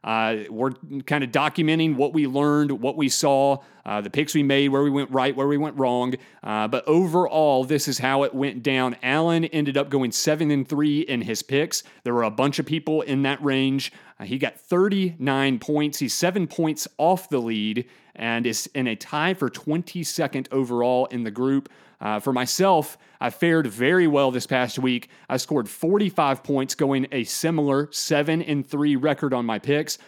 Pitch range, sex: 130-155 Hz, male